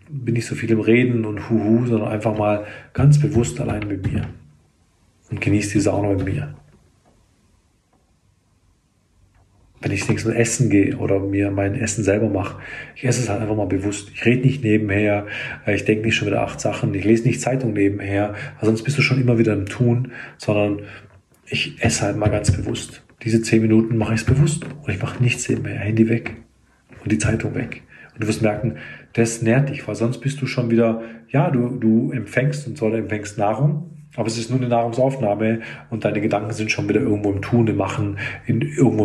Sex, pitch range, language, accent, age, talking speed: male, 105-120 Hz, German, German, 40-59, 200 wpm